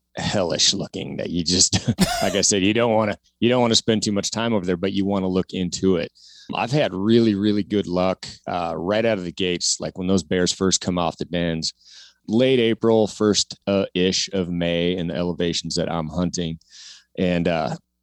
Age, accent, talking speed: 30-49, American, 215 wpm